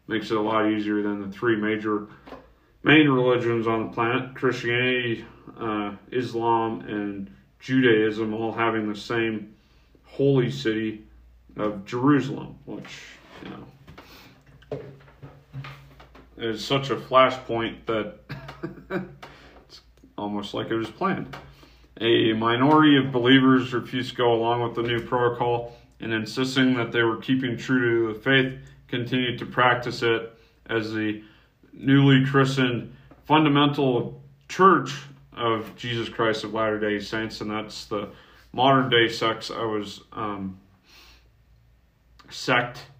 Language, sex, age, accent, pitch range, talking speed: English, male, 40-59, American, 110-125 Hz, 125 wpm